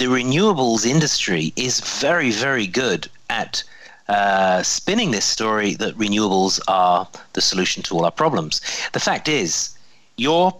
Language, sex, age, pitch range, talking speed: English, male, 40-59, 100-150 Hz, 140 wpm